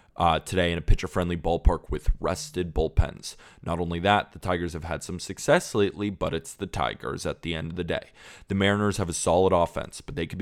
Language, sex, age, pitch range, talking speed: English, male, 20-39, 85-100 Hz, 220 wpm